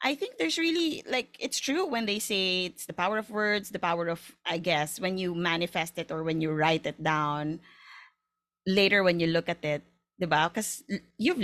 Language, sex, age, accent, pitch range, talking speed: Filipino, female, 20-39, native, 160-205 Hz, 200 wpm